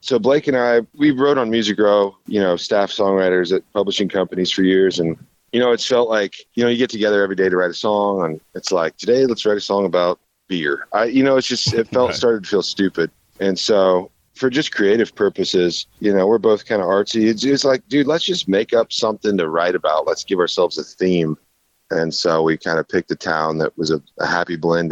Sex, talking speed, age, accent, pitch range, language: male, 240 wpm, 30-49, American, 85-115 Hz, English